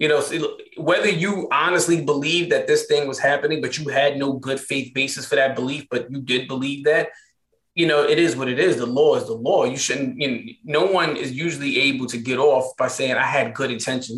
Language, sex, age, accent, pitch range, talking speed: English, male, 30-49, American, 135-175 Hz, 235 wpm